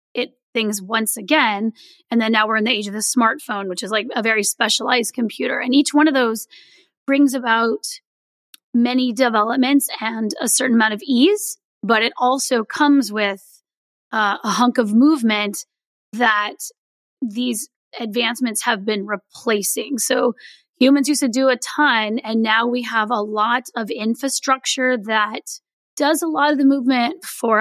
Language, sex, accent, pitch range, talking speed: English, female, American, 220-270 Hz, 160 wpm